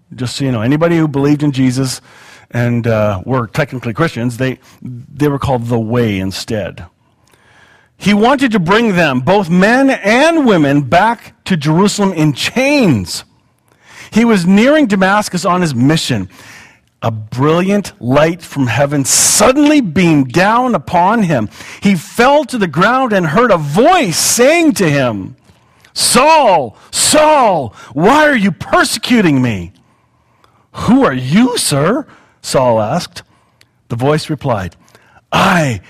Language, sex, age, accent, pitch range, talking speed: English, male, 40-59, American, 125-200 Hz, 135 wpm